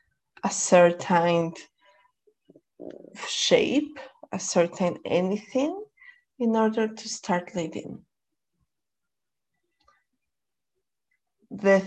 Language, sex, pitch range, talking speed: English, female, 180-265 Hz, 60 wpm